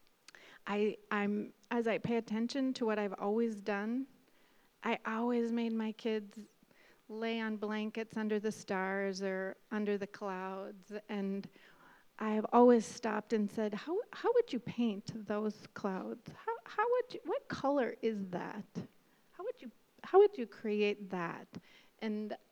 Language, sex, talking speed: English, female, 150 wpm